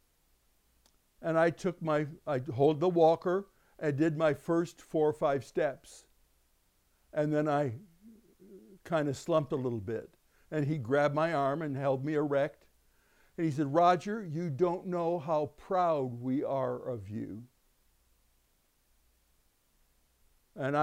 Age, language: 60-79, English